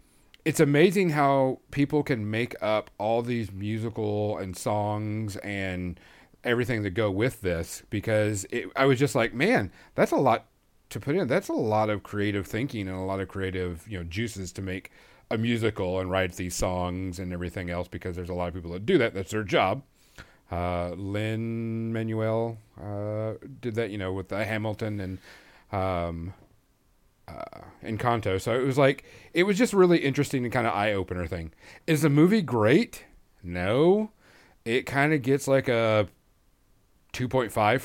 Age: 40-59